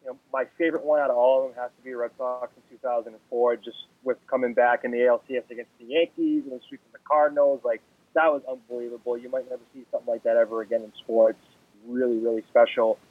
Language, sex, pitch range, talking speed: English, male, 120-150 Hz, 225 wpm